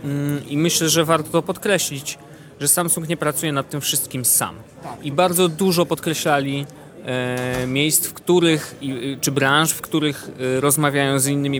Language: Polish